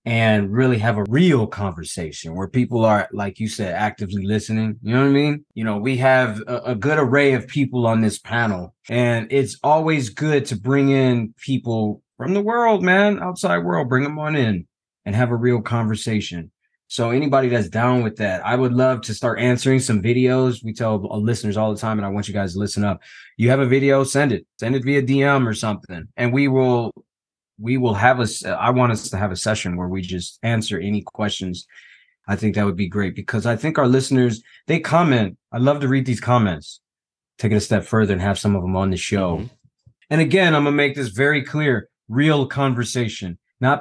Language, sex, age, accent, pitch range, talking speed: English, male, 20-39, American, 110-135 Hz, 220 wpm